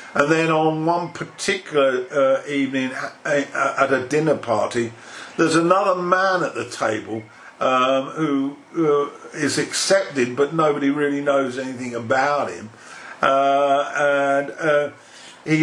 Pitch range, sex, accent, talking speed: 135-155 Hz, male, British, 125 wpm